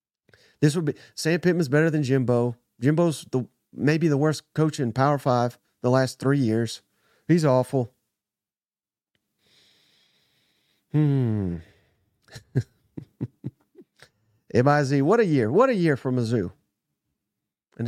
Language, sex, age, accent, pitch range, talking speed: English, male, 40-59, American, 120-165 Hz, 120 wpm